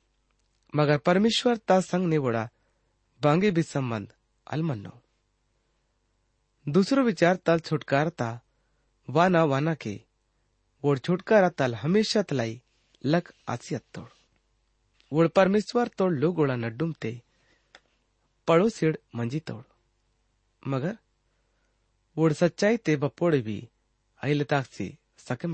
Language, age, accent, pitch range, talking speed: English, 30-49, Indian, 115-170 Hz, 95 wpm